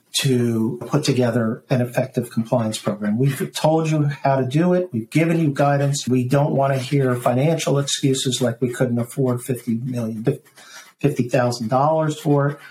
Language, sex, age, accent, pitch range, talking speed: English, male, 50-69, American, 120-140 Hz, 160 wpm